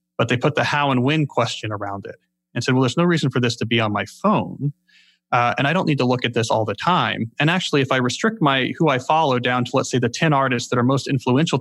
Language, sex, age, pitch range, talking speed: English, male, 30-49, 115-145 Hz, 285 wpm